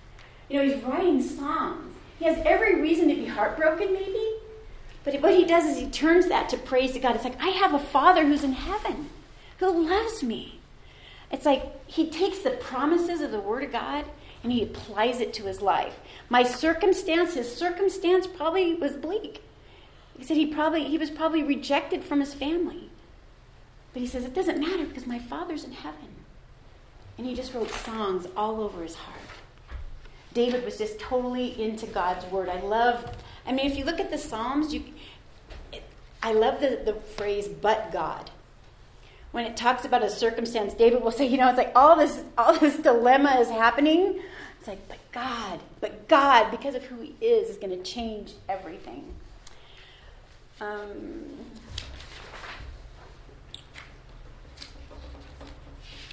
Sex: female